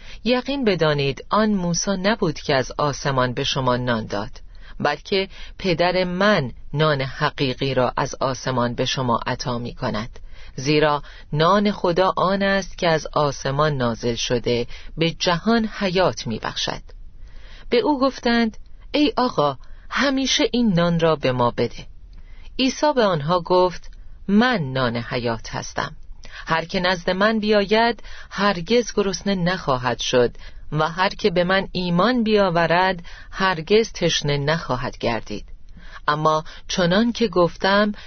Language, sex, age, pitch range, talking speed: Persian, female, 40-59, 130-200 Hz, 130 wpm